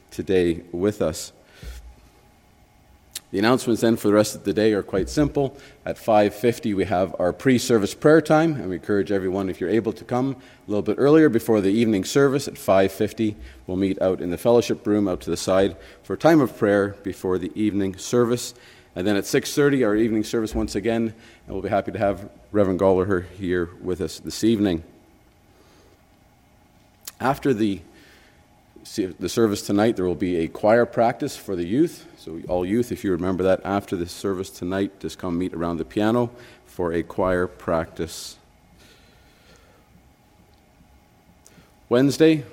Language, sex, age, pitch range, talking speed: English, male, 40-59, 90-115 Hz, 170 wpm